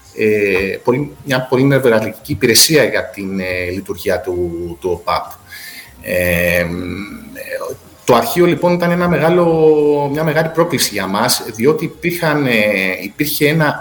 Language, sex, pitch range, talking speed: Greek, male, 110-175 Hz, 115 wpm